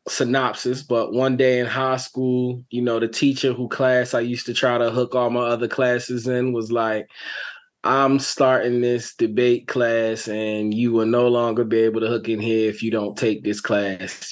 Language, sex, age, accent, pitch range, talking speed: English, male, 20-39, American, 105-120 Hz, 200 wpm